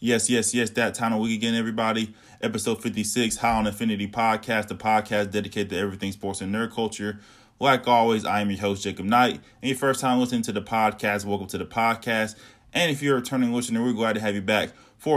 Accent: American